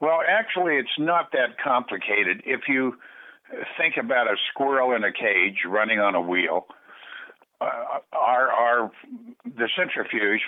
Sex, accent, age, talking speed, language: male, American, 60-79, 135 wpm, English